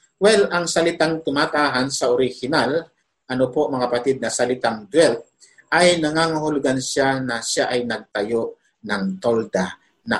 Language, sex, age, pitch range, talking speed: Filipino, male, 50-69, 125-165 Hz, 135 wpm